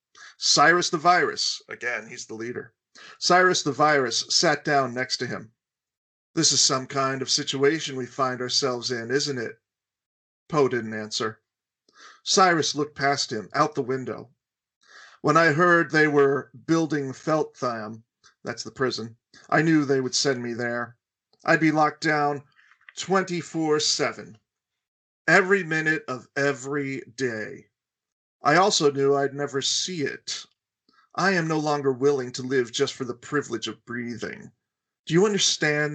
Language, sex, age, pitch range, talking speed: English, male, 40-59, 125-155 Hz, 145 wpm